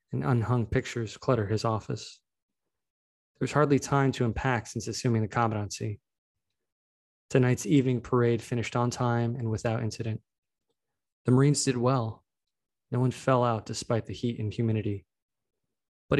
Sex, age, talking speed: male, 20-39, 140 wpm